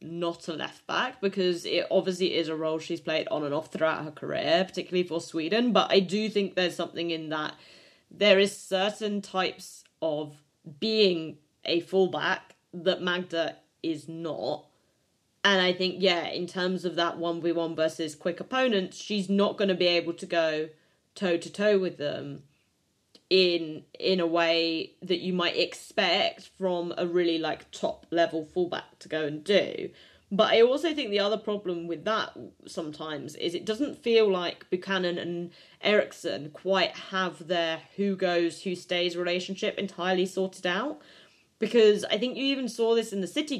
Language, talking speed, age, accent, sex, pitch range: English, 170 wpm, 20-39, British, female, 170-200 Hz